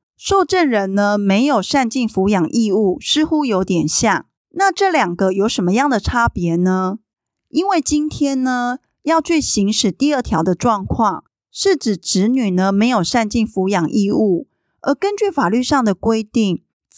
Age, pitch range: 30-49, 195-275 Hz